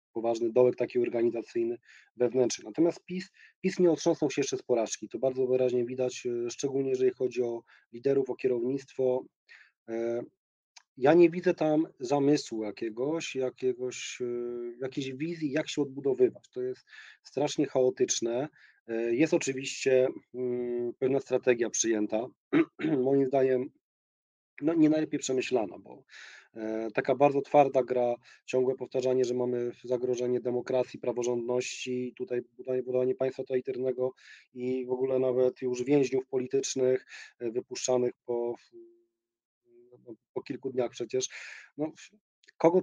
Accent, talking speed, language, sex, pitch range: native, 120 wpm, Polish, male, 125-160 Hz